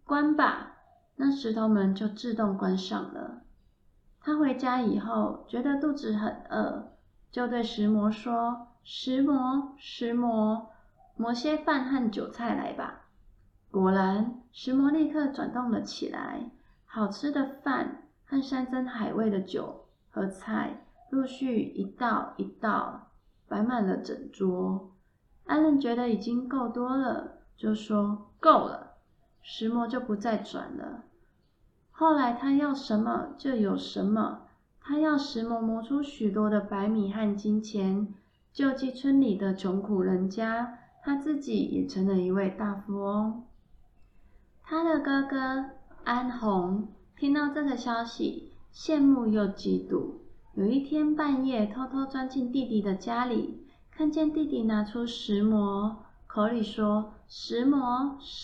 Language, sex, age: Chinese, female, 20-39